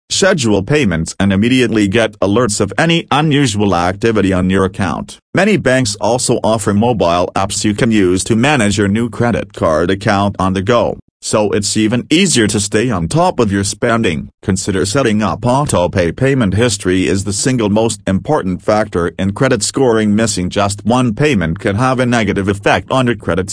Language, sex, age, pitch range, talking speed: English, male, 40-59, 100-120 Hz, 180 wpm